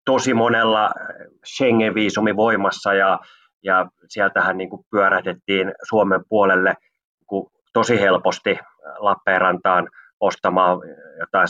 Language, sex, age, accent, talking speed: Finnish, male, 30-49, native, 90 wpm